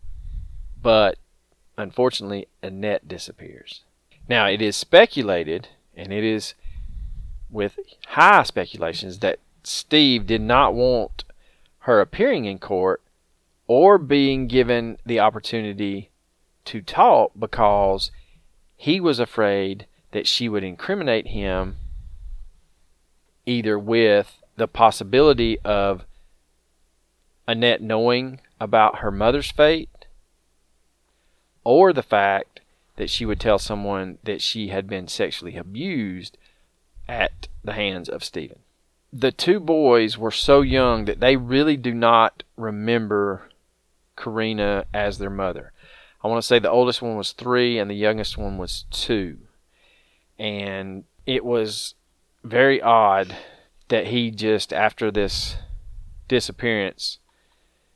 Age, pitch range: 40-59, 90-115 Hz